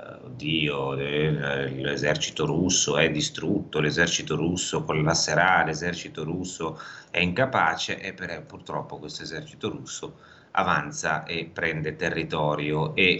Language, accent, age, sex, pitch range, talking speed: Italian, native, 30-49, male, 80-100 Hz, 110 wpm